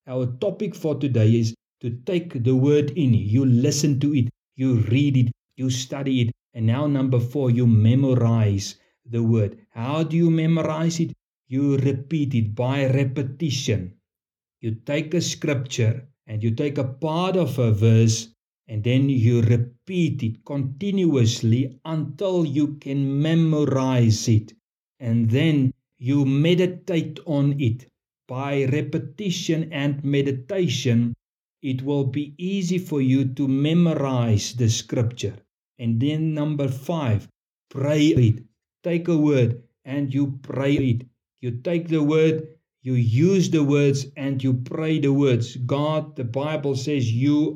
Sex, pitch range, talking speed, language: male, 120-150 Hz, 140 wpm, English